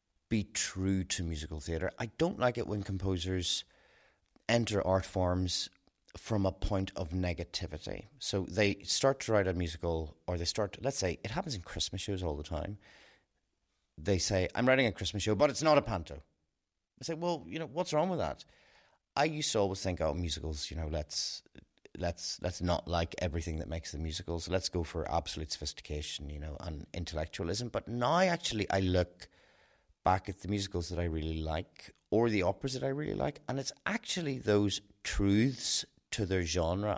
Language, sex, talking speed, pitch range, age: English, male, 190 wpm, 85-105 Hz, 30-49